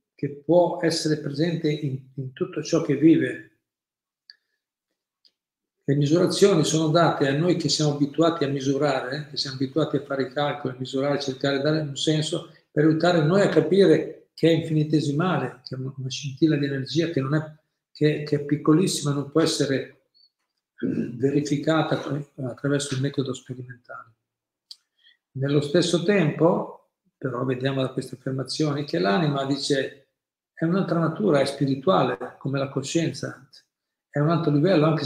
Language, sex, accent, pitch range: Italian, male, native, 140-160 Hz